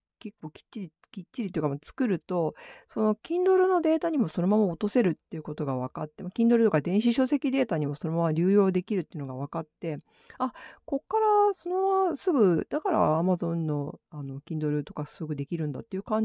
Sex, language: female, Japanese